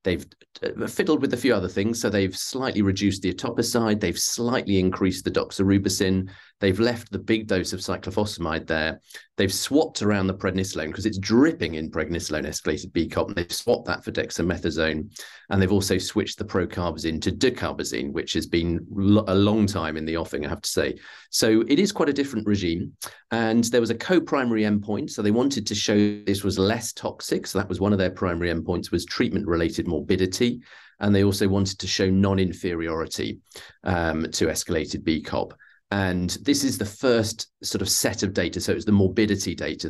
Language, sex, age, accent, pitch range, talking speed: English, male, 40-59, British, 90-110 Hz, 190 wpm